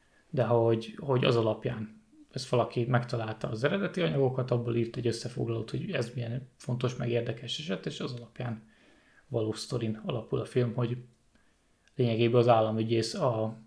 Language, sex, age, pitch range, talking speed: Hungarian, male, 20-39, 110-125 Hz, 145 wpm